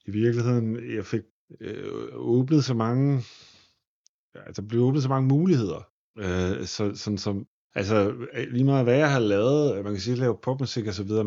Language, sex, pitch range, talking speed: Danish, male, 105-130 Hz, 195 wpm